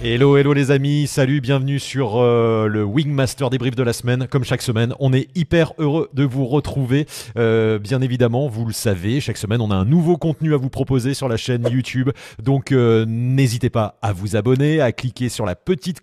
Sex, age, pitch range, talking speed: male, 30-49, 105-130 Hz, 210 wpm